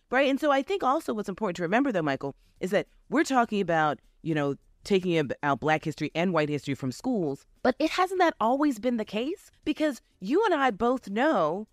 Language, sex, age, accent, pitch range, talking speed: English, female, 30-49, American, 150-235 Hz, 215 wpm